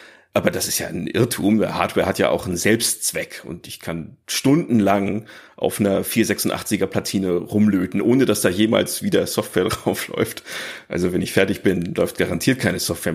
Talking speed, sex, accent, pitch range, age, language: 170 wpm, male, German, 100-120 Hz, 40-59, German